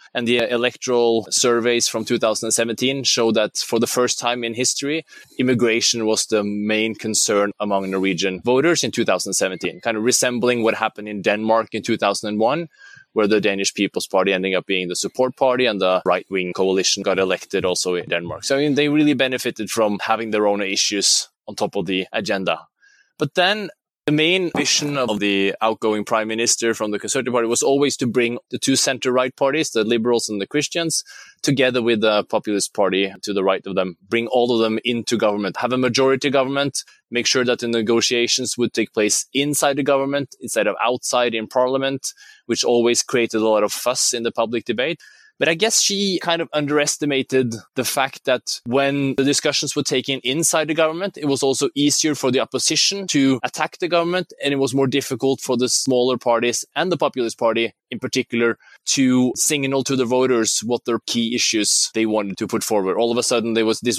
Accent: Norwegian